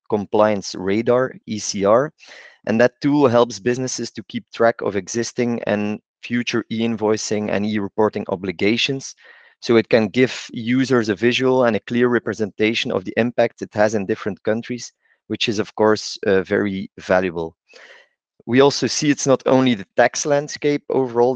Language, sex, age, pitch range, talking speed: English, male, 30-49, 105-125 Hz, 155 wpm